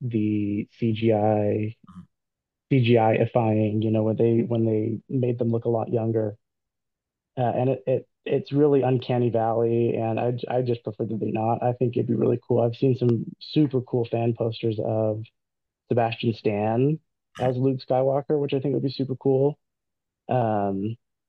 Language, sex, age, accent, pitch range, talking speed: English, male, 30-49, American, 115-130 Hz, 165 wpm